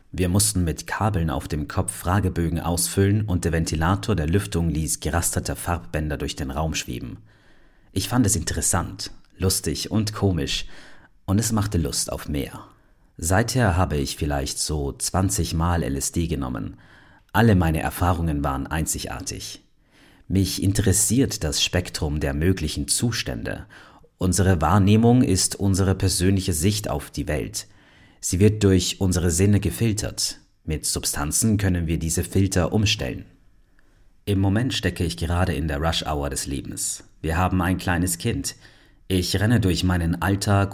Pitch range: 85-100 Hz